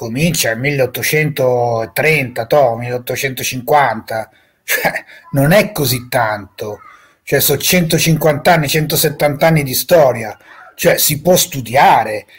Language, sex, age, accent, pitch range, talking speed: Italian, male, 30-49, native, 135-160 Hz, 100 wpm